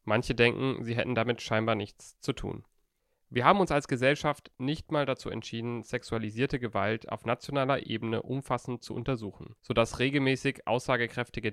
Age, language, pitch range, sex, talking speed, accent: 30-49, German, 110-135 Hz, male, 150 wpm, German